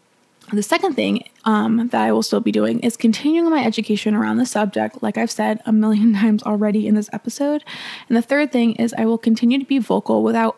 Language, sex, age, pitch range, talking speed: English, female, 20-39, 215-240 Hz, 220 wpm